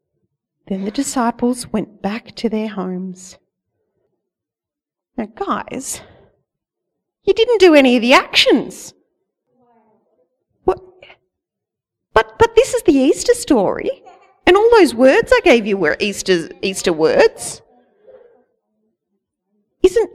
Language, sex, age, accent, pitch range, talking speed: English, female, 40-59, Australian, 215-310 Hz, 110 wpm